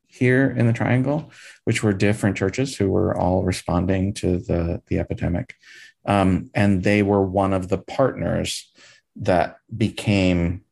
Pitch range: 90-115 Hz